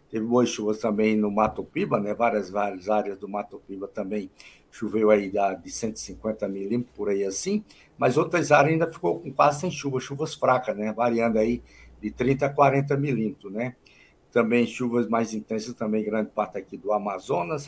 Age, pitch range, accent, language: 60-79, 105-135 Hz, Brazilian, Portuguese